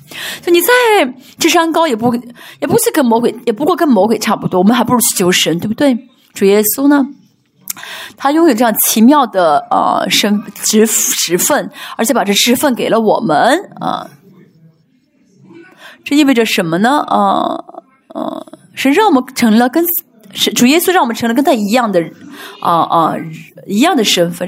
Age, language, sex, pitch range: 20-39, Chinese, female, 210-320 Hz